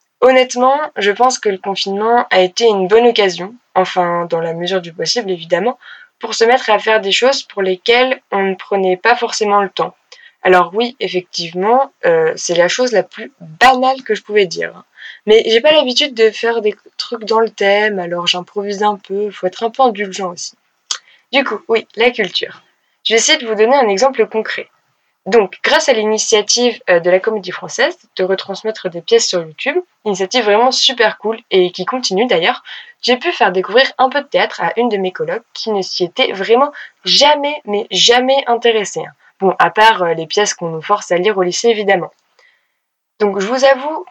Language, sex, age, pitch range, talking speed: French, female, 20-39, 195-250 Hz, 195 wpm